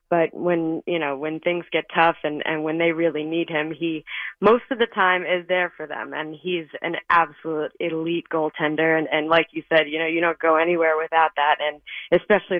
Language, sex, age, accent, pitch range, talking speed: English, female, 20-39, American, 160-180 Hz, 215 wpm